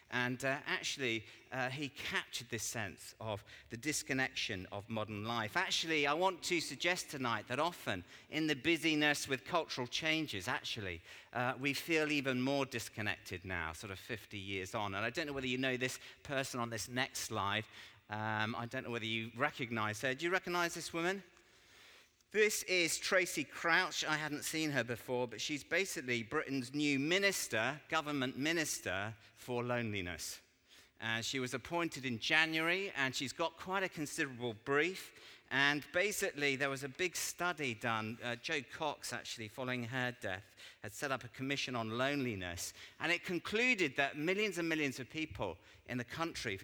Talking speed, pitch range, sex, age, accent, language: 170 wpm, 115-155 Hz, male, 40-59, British, English